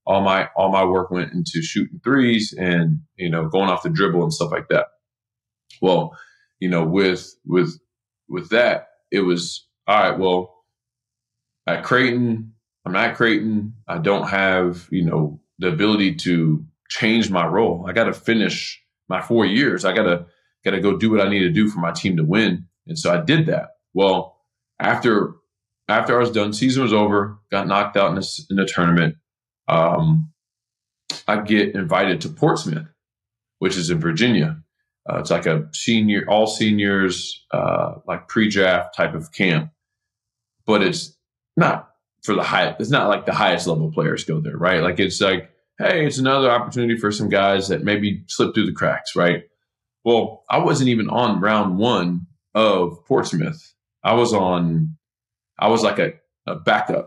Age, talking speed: 20-39, 180 wpm